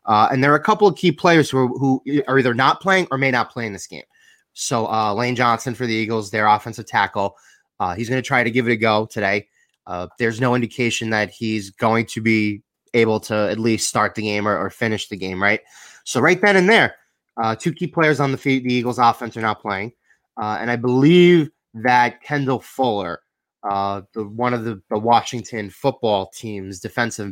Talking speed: 220 wpm